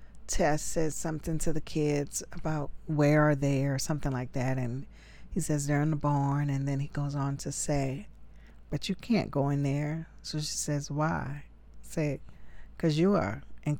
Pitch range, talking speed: 130-165 Hz, 185 wpm